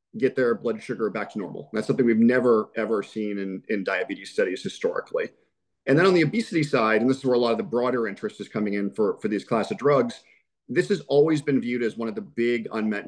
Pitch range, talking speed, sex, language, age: 115-145 Hz, 250 wpm, male, English, 40-59